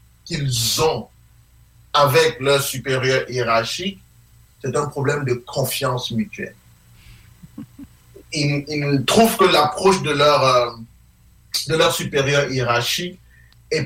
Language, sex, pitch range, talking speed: English, male, 120-180 Hz, 105 wpm